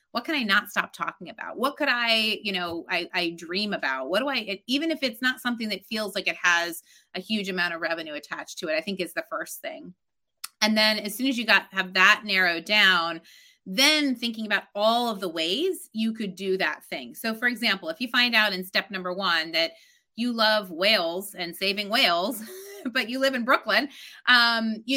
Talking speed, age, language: 220 wpm, 30-49, English